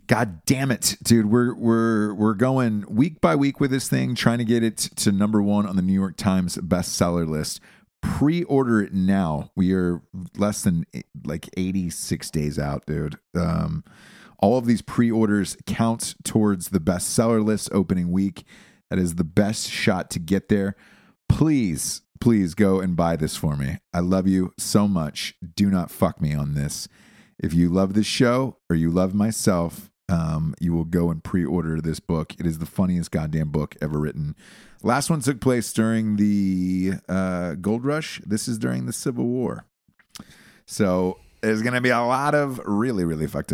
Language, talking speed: English, 180 wpm